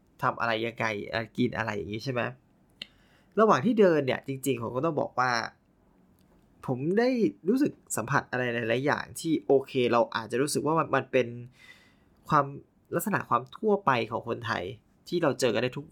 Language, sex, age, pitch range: Thai, male, 20-39, 120-160 Hz